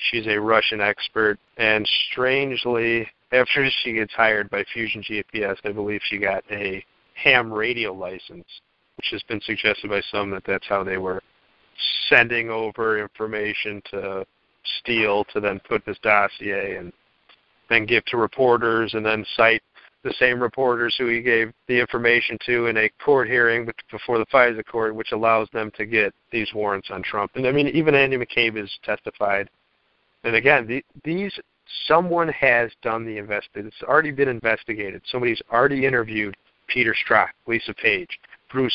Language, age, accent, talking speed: English, 40-59, American, 160 wpm